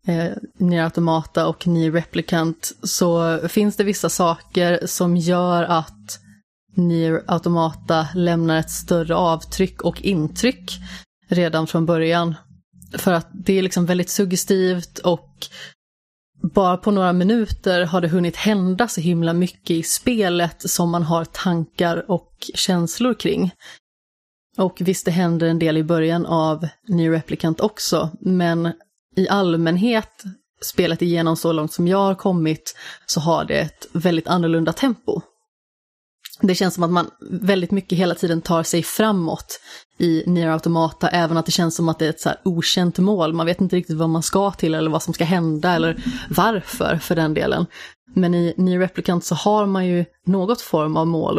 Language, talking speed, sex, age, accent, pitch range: Swedish, 165 wpm, female, 30-49, native, 165-185 Hz